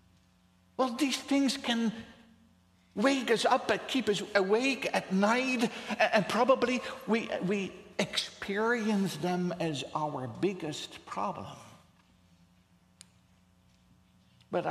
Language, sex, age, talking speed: English, male, 60-79, 100 wpm